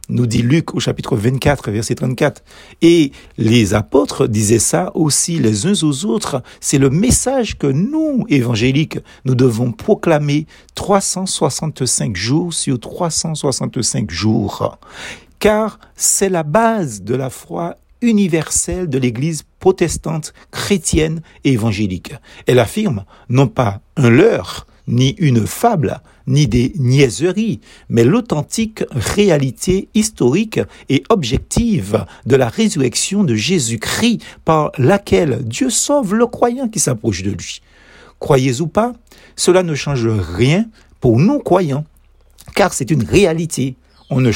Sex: male